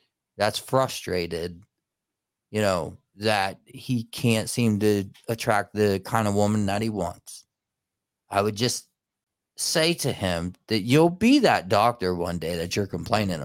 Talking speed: 145 wpm